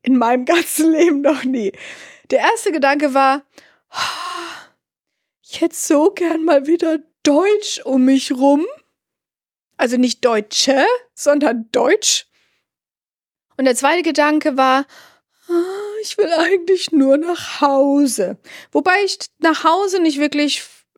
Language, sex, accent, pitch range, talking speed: German, female, German, 245-320 Hz, 120 wpm